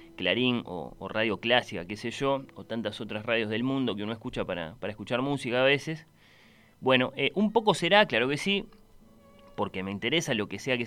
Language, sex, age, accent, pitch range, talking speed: Spanish, male, 20-39, Argentinian, 105-145 Hz, 210 wpm